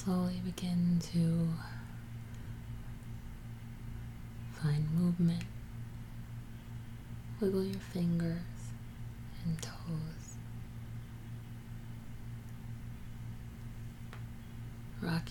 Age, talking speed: 30-49, 45 wpm